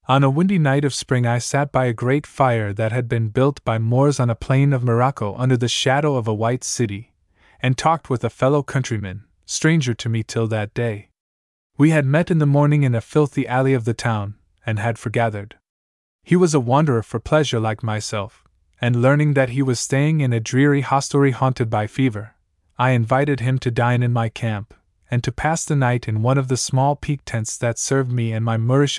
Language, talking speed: English, 215 wpm